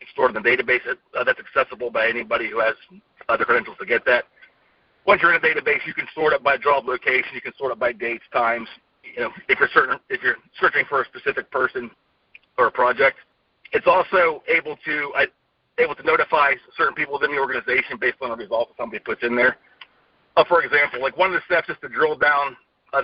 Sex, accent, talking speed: male, American, 225 wpm